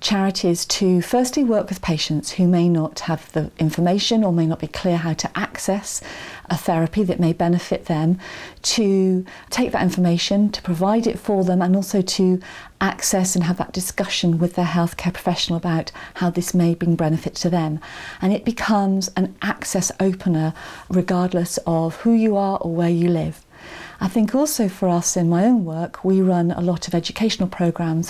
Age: 40-59